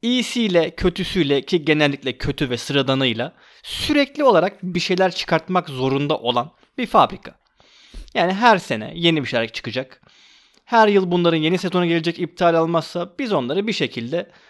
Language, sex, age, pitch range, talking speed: Turkish, male, 30-49, 150-210 Hz, 145 wpm